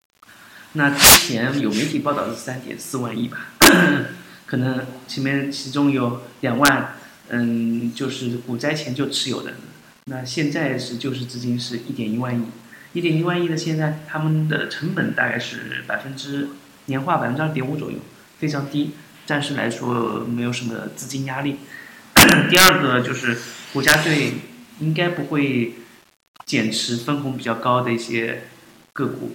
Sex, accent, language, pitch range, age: male, native, Chinese, 115-140 Hz, 30-49